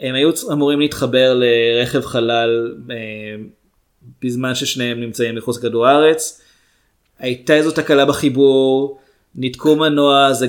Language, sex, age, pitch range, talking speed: Hebrew, male, 20-39, 125-150 Hz, 115 wpm